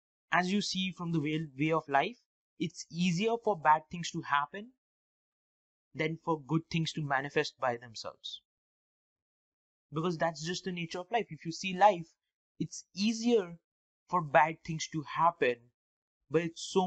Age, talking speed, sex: 20-39, 155 wpm, male